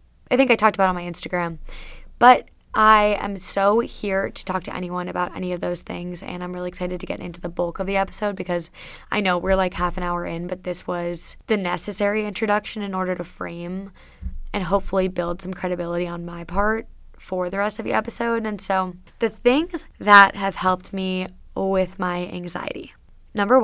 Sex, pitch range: female, 180-205 Hz